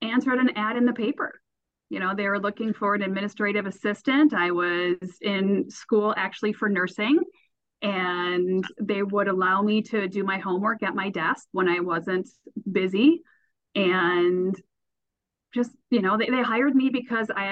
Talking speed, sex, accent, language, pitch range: 165 wpm, female, American, English, 190-265 Hz